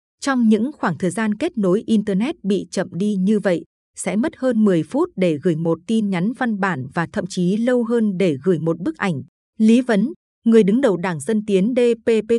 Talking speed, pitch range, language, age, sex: 215 wpm, 180-230 Hz, Vietnamese, 20-39, female